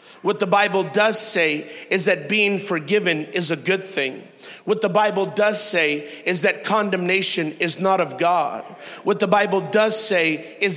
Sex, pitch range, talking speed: male, 175-220 Hz, 175 wpm